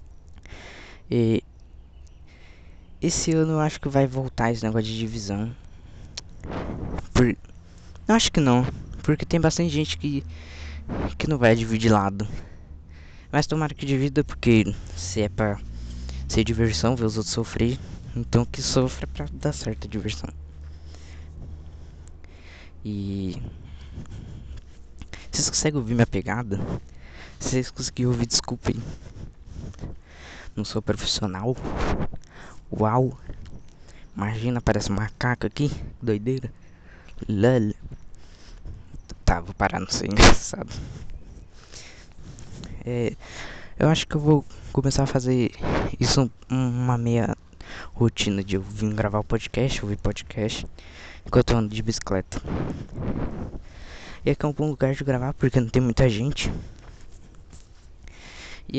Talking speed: 120 wpm